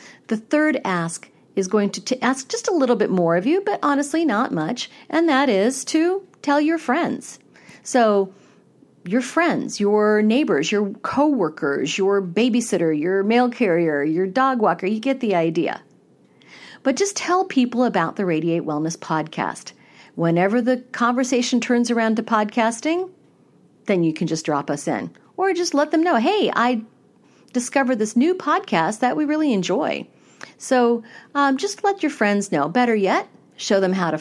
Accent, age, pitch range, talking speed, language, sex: American, 50-69, 175-270 Hz, 170 wpm, English, female